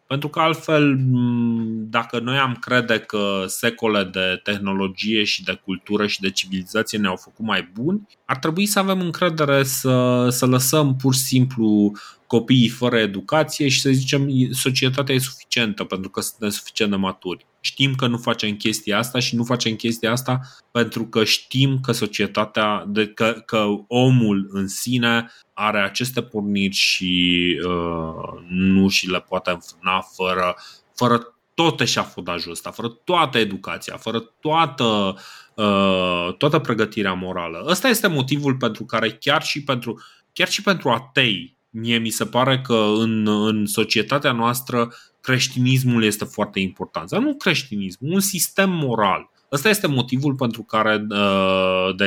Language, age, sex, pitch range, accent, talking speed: Romanian, 20-39, male, 100-130 Hz, native, 150 wpm